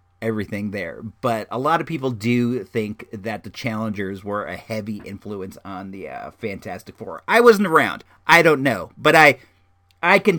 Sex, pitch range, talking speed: male, 115-165 Hz, 180 wpm